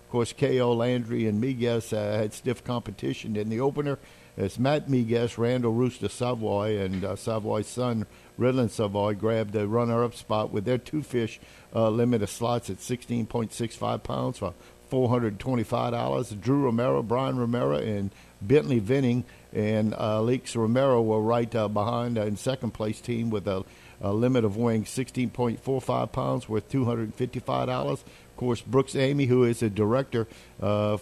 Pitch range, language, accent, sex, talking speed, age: 110-125 Hz, English, American, male, 160 wpm, 50-69